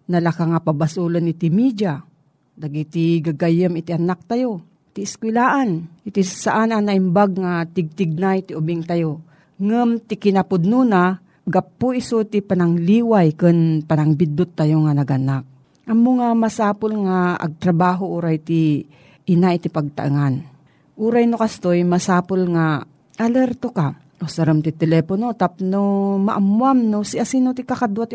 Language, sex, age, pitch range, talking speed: Filipino, female, 40-59, 165-205 Hz, 140 wpm